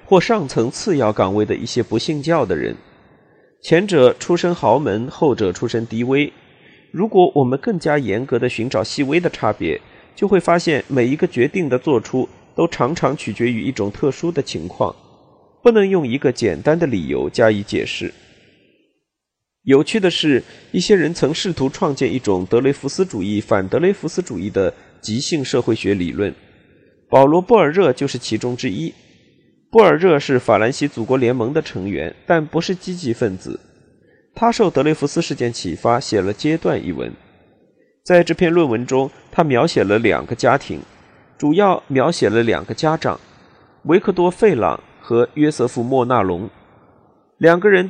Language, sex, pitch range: Chinese, male, 120-170 Hz